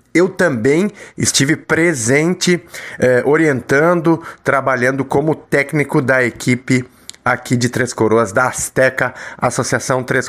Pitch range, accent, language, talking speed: 125-165 Hz, Brazilian, Portuguese, 110 wpm